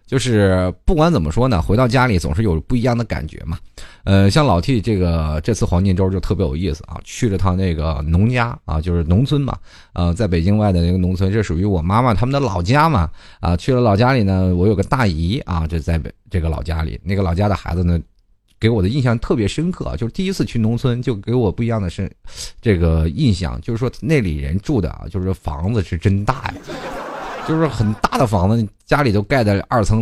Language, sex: Chinese, male